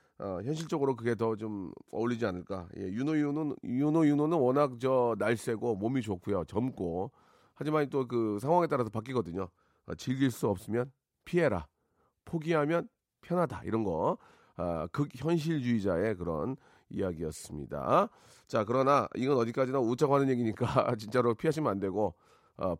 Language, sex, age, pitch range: Korean, male, 40-59, 110-155 Hz